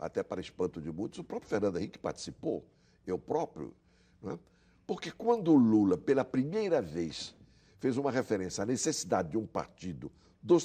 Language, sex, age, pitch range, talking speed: Portuguese, male, 60-79, 100-150 Hz, 165 wpm